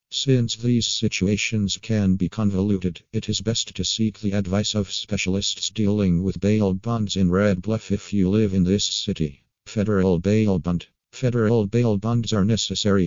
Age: 50-69